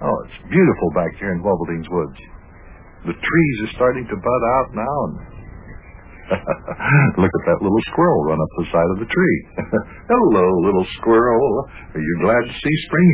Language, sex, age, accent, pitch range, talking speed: English, male, 60-79, American, 90-125 Hz, 175 wpm